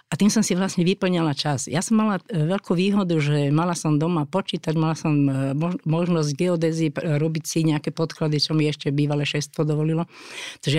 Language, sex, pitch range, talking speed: Slovak, female, 150-190 Hz, 180 wpm